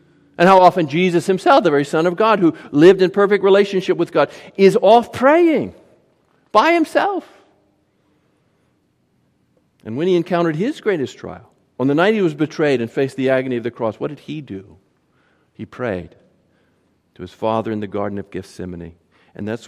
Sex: male